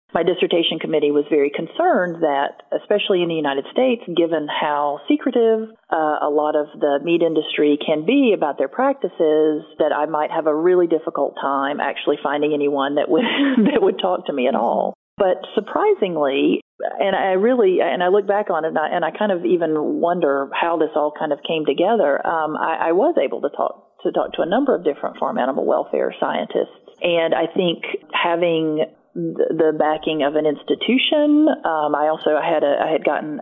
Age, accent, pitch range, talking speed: 40-59, American, 150-195 Hz, 195 wpm